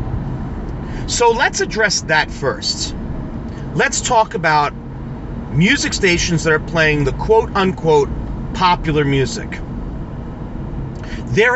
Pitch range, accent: 120-195 Hz, American